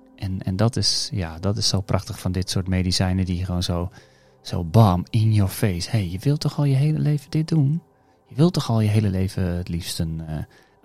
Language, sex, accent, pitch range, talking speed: Dutch, male, Dutch, 95-120 Hz, 240 wpm